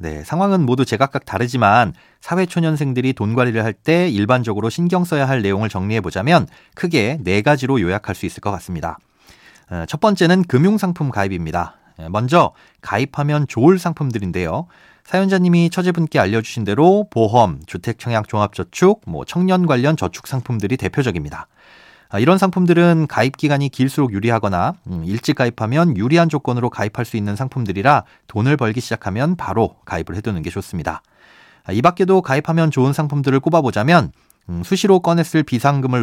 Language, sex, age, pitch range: Korean, male, 30-49, 105-165 Hz